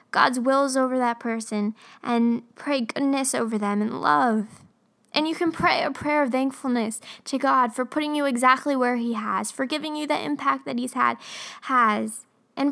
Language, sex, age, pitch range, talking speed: English, female, 10-29, 235-320 Hz, 185 wpm